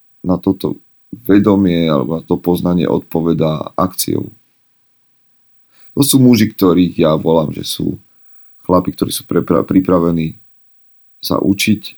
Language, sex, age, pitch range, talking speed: Slovak, male, 40-59, 85-105 Hz, 115 wpm